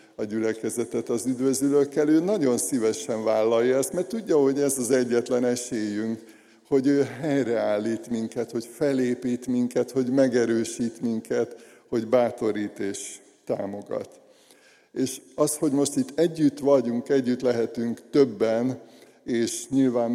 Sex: male